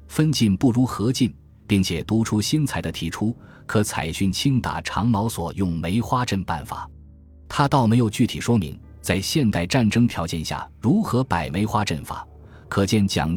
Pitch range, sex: 85-110 Hz, male